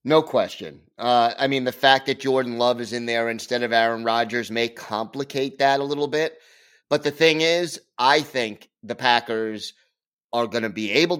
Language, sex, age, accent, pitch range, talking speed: English, male, 30-49, American, 120-140 Hz, 195 wpm